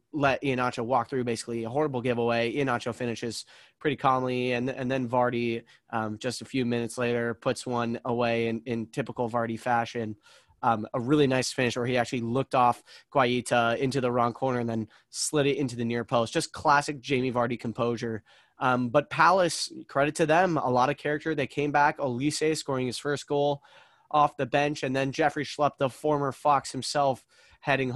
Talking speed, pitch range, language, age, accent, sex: 190 wpm, 120-145 Hz, English, 20-39, American, male